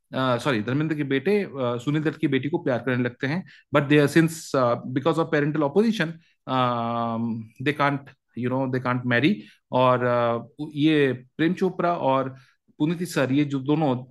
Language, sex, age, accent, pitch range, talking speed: Hindi, male, 40-59, native, 130-160 Hz, 130 wpm